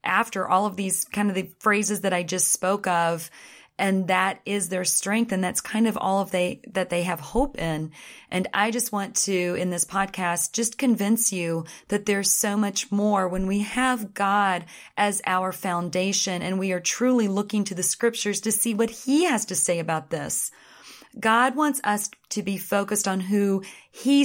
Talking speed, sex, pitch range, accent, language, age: 195 wpm, female, 180-215 Hz, American, English, 30-49